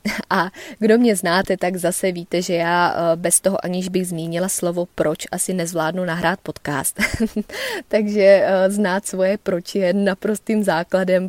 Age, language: 20-39, Czech